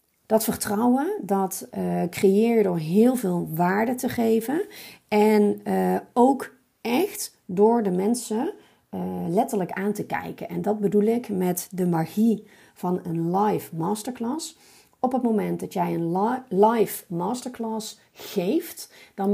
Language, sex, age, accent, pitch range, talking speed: Dutch, female, 40-59, Dutch, 180-225 Hz, 140 wpm